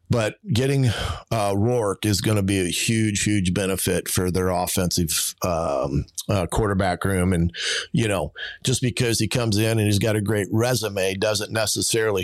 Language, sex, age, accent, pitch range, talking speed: English, male, 40-59, American, 90-105 Hz, 170 wpm